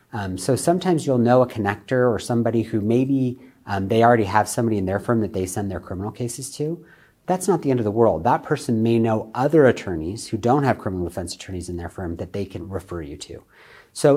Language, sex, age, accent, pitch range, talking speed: English, male, 40-59, American, 100-125 Hz, 235 wpm